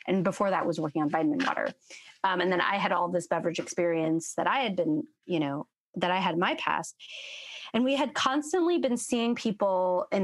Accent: American